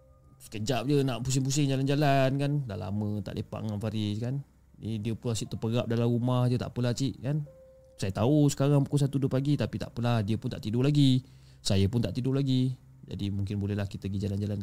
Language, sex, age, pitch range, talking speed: Malay, male, 30-49, 100-145 Hz, 205 wpm